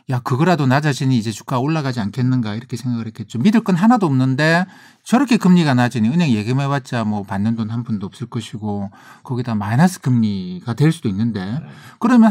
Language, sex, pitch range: Korean, male, 110-150 Hz